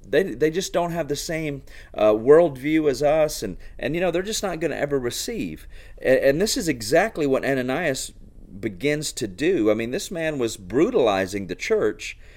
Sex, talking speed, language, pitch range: male, 195 wpm, English, 105-160 Hz